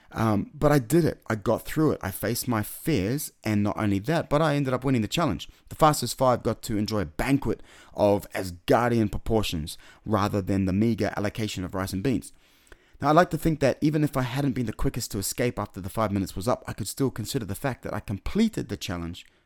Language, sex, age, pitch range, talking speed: English, male, 30-49, 100-135 Hz, 235 wpm